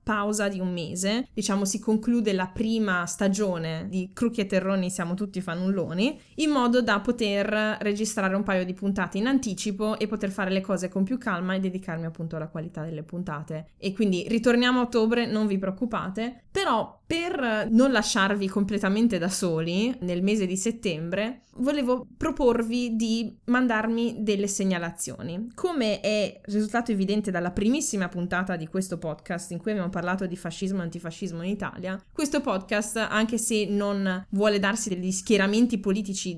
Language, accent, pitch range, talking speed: Italian, native, 185-225 Hz, 160 wpm